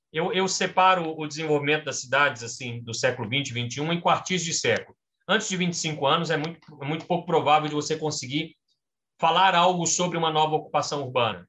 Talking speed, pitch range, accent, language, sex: 190 wpm, 125-170 Hz, Brazilian, Portuguese, male